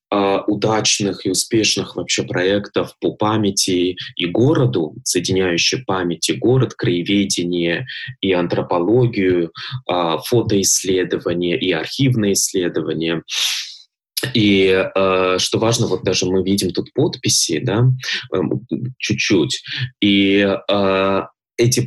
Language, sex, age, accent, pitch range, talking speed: Russian, male, 20-39, native, 95-115 Hz, 90 wpm